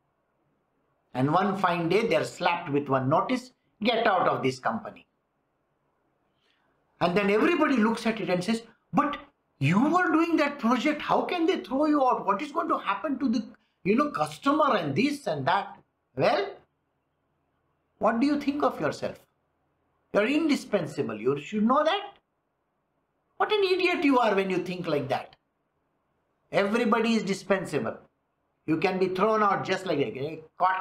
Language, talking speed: English, 160 wpm